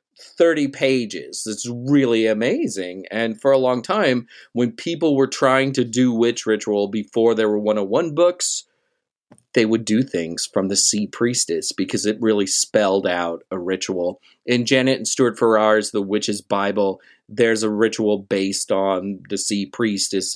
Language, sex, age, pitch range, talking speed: English, male, 30-49, 100-125 Hz, 160 wpm